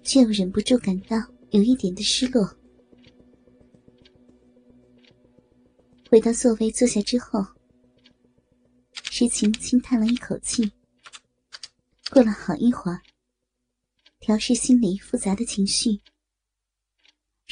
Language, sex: Chinese, male